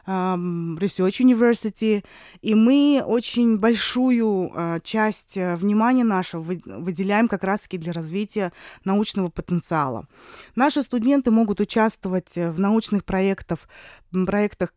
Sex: female